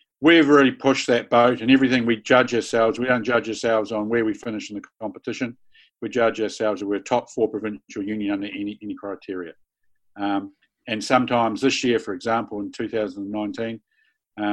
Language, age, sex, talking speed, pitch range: English, 50-69, male, 185 wpm, 110-130 Hz